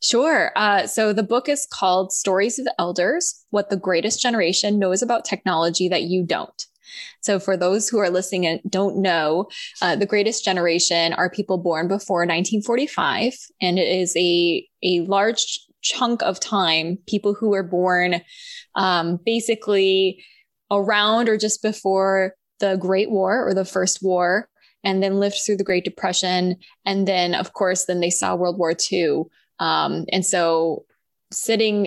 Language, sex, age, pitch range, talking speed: English, female, 20-39, 185-210 Hz, 160 wpm